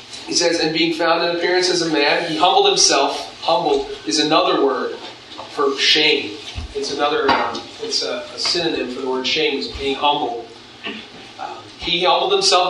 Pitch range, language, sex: 135-175 Hz, English, male